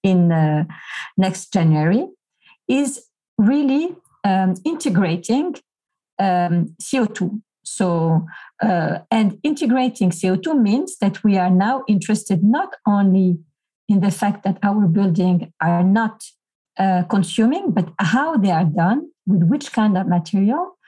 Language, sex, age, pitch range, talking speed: English, female, 50-69, 185-240 Hz, 125 wpm